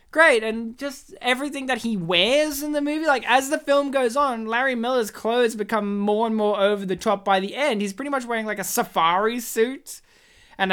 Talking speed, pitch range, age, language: 215 wpm, 180-240 Hz, 20-39, English